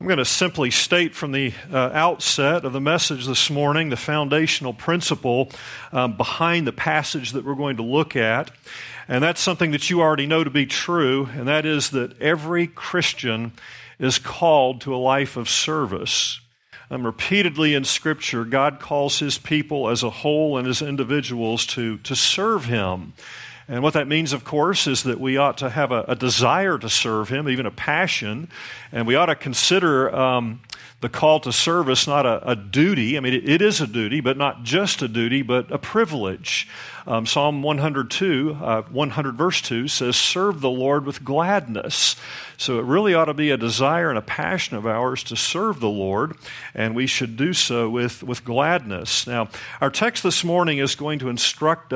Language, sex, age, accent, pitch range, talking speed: English, male, 50-69, American, 125-155 Hz, 185 wpm